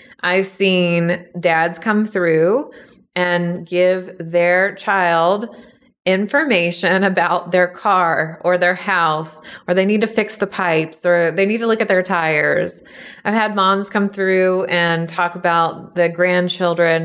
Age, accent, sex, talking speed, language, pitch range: 30-49, American, female, 145 wpm, English, 170-210 Hz